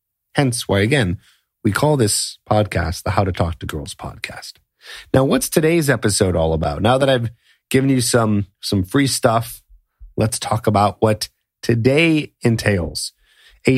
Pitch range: 105-135 Hz